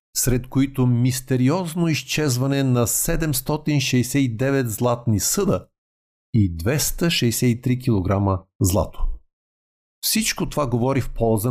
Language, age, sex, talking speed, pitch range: Bulgarian, 50-69, male, 90 wpm, 105-145 Hz